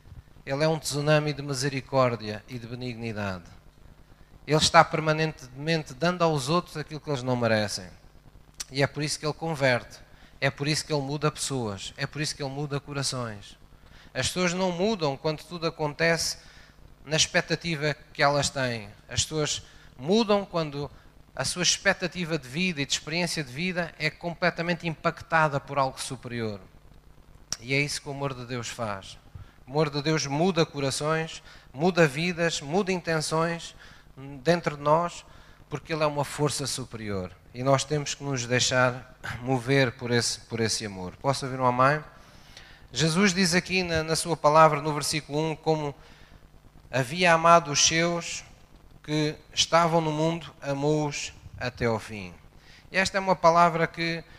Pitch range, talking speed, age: 125-160 Hz, 160 wpm, 20-39